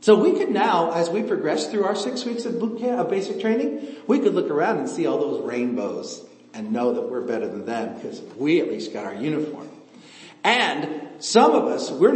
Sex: male